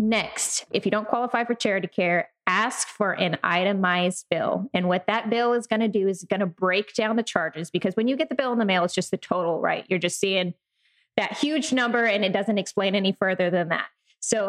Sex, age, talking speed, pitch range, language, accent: female, 20-39, 235 wpm, 185-225 Hz, English, American